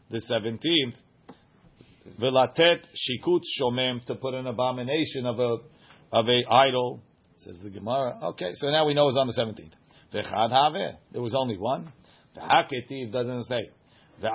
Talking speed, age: 140 wpm, 50-69